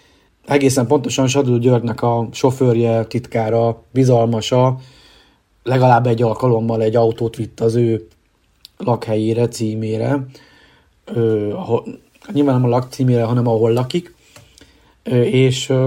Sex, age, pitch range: male, 30-49, 115-135 Hz